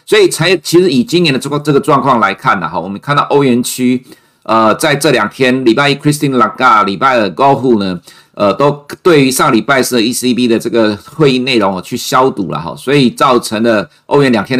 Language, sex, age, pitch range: Chinese, male, 50-69, 110-145 Hz